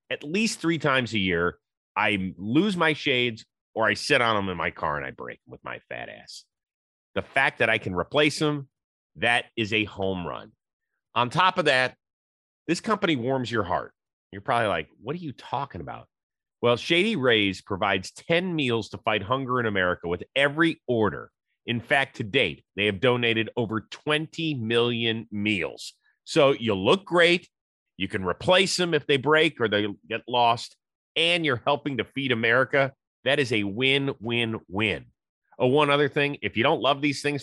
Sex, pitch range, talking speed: male, 105-150 Hz, 190 wpm